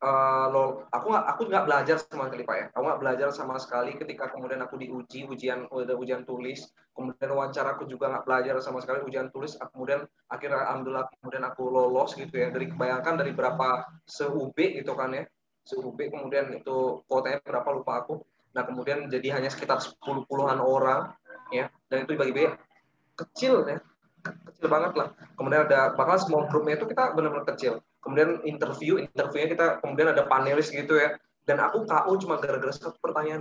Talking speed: 175 wpm